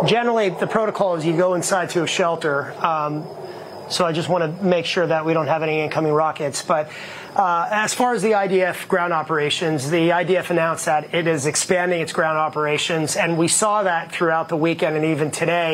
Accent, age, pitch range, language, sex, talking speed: American, 30-49, 160-180 Hz, English, male, 200 wpm